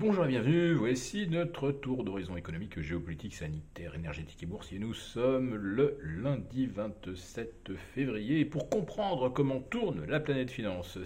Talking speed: 140 wpm